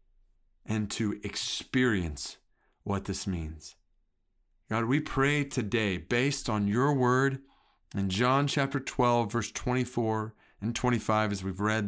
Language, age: English, 50-69